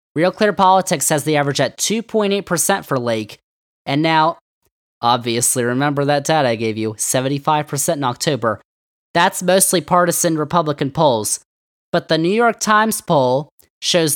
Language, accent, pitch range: English, American, 135-180 Hz